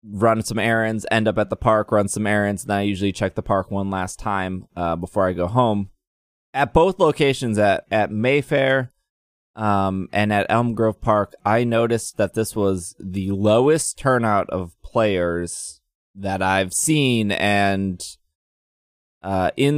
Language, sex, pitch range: English, male, 95-115 Hz